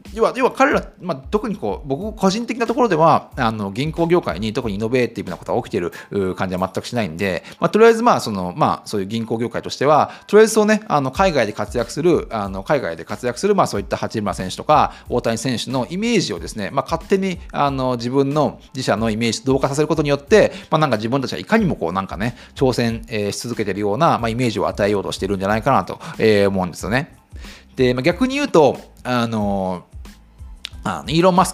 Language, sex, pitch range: Japanese, male, 100-165 Hz